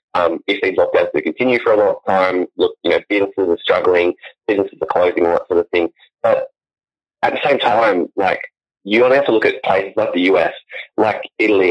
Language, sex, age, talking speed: English, male, 30-49, 215 wpm